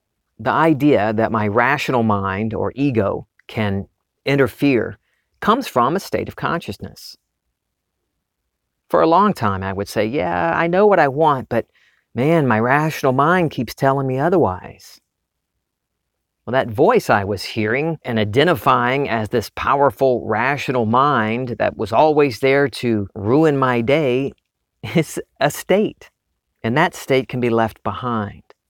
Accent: American